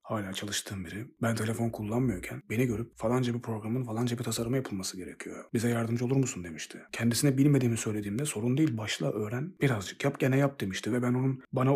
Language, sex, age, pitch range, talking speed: Turkish, male, 40-59, 110-130 Hz, 190 wpm